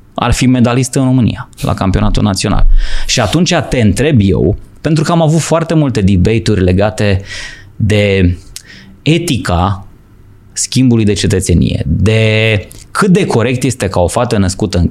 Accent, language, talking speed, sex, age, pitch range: native, Romanian, 145 wpm, male, 20-39, 95-130 Hz